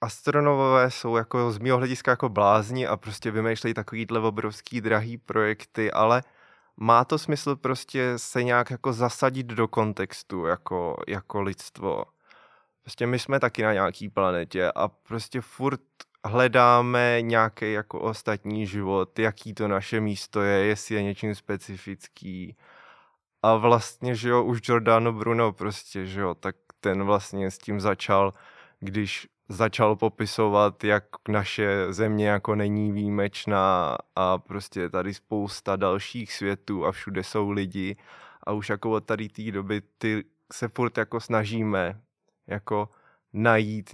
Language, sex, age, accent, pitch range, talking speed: Czech, male, 20-39, native, 100-115 Hz, 140 wpm